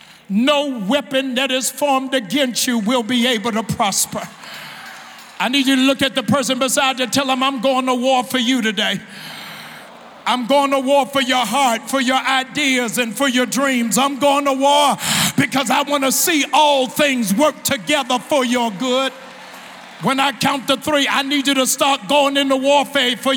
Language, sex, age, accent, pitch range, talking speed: English, male, 50-69, American, 250-290 Hz, 195 wpm